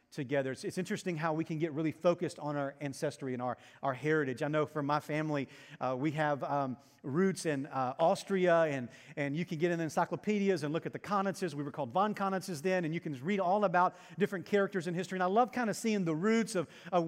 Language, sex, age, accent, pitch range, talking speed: English, male, 40-59, American, 155-205 Hz, 245 wpm